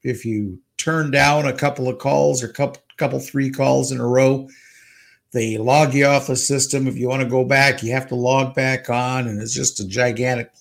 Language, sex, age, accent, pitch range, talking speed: English, male, 50-69, American, 120-155 Hz, 220 wpm